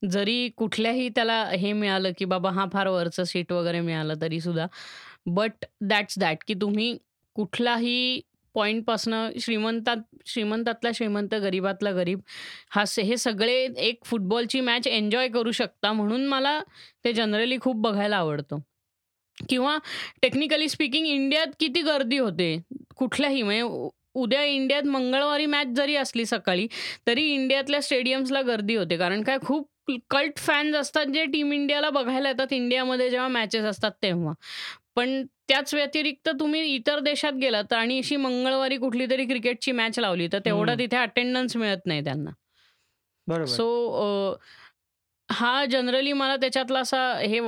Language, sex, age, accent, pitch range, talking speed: Marathi, female, 20-39, native, 210-270 Hz, 135 wpm